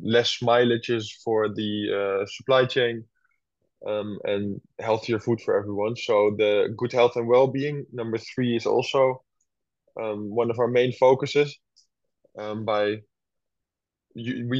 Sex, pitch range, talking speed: male, 105-125 Hz, 130 wpm